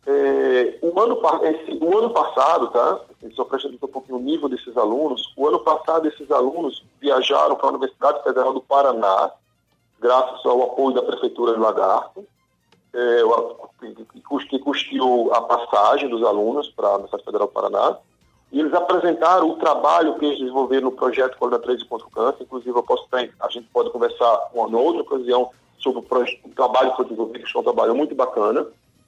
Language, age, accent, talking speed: Portuguese, 40-59, Brazilian, 190 wpm